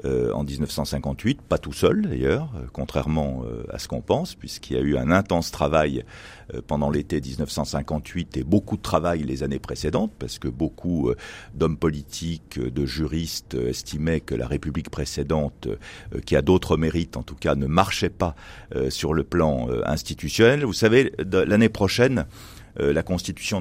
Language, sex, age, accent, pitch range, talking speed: French, male, 50-69, French, 75-95 Hz, 150 wpm